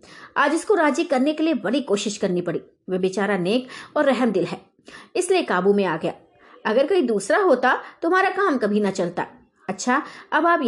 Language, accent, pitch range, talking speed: Hindi, native, 210-310 Hz, 185 wpm